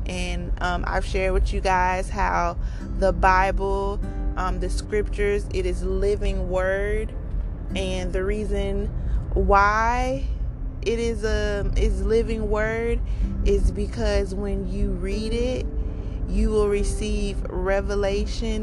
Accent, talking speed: American, 120 wpm